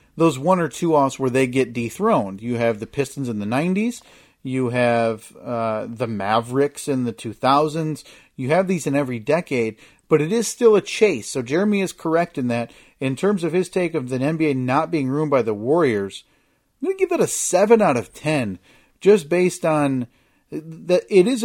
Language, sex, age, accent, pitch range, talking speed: English, male, 40-59, American, 125-160 Hz, 200 wpm